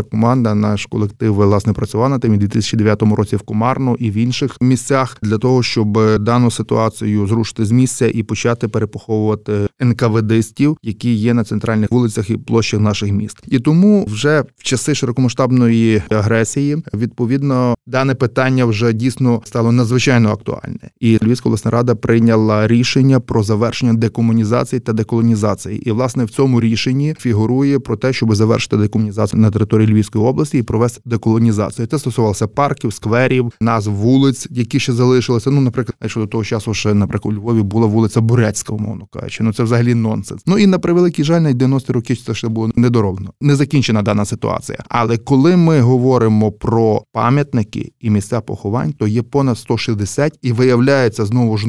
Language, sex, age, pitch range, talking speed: Ukrainian, male, 20-39, 110-125 Hz, 165 wpm